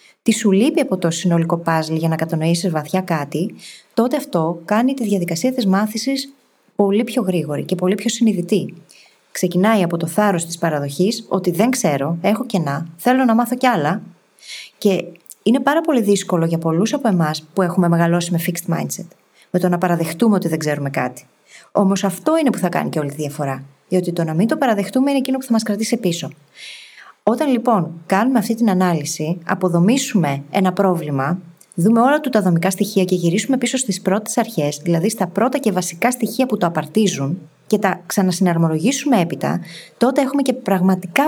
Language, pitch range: Greek, 170-225 Hz